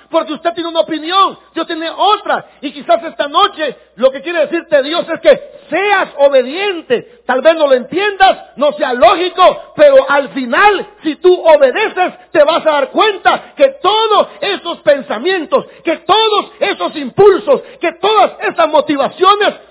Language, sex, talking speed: Spanish, male, 160 wpm